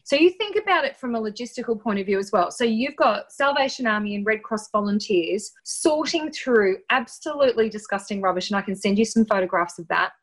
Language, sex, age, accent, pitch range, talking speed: English, female, 20-39, Australian, 195-250 Hz, 210 wpm